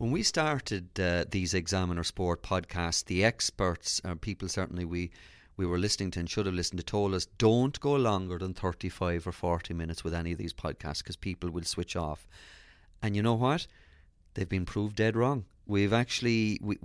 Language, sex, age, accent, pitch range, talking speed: English, male, 30-49, Irish, 90-110 Hz, 200 wpm